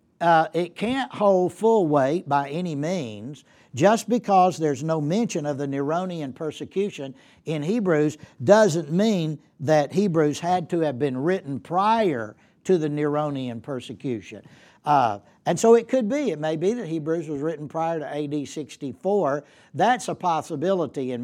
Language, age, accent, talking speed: English, 60-79, American, 155 wpm